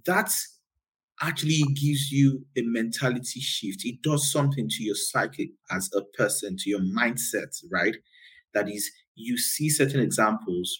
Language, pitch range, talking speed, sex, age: English, 95-145 Hz, 145 wpm, male, 30-49